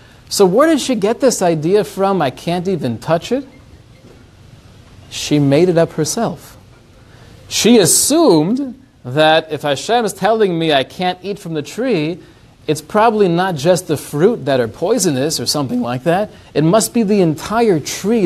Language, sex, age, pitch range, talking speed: English, male, 40-59, 135-205 Hz, 170 wpm